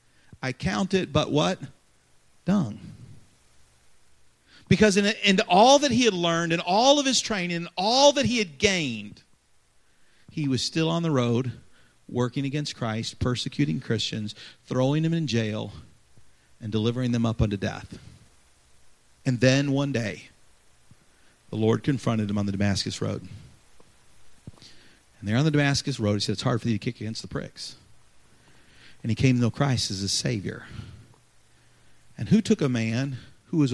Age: 40-59